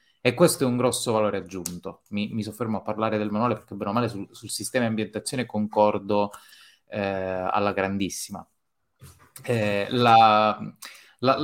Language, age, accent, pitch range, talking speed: Italian, 30-49, native, 110-140 Hz, 150 wpm